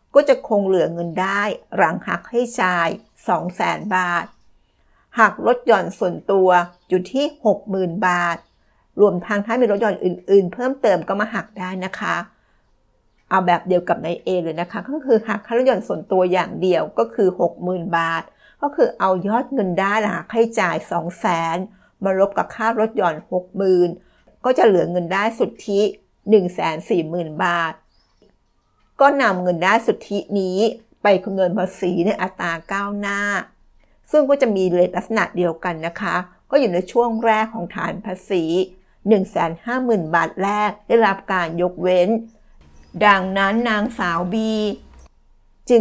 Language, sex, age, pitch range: Thai, female, 60-79, 175-220 Hz